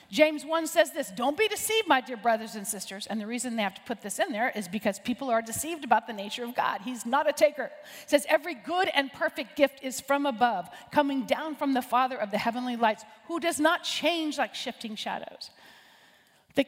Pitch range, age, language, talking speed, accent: 245-330 Hz, 40-59, English, 225 wpm, American